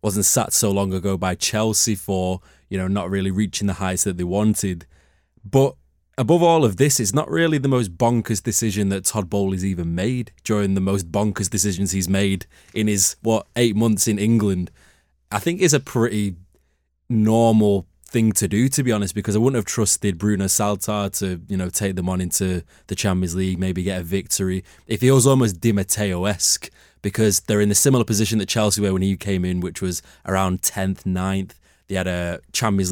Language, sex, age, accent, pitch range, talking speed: English, male, 20-39, British, 95-115 Hz, 195 wpm